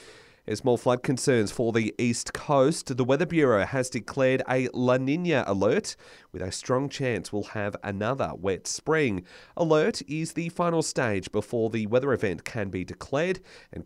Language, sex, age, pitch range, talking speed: English, male, 30-49, 100-135 Hz, 170 wpm